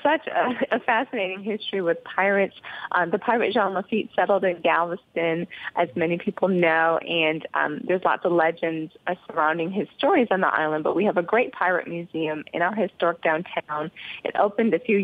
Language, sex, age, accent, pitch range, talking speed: English, female, 30-49, American, 160-205 Hz, 185 wpm